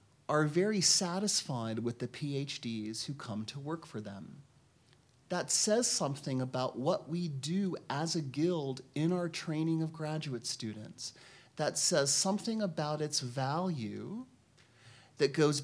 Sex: male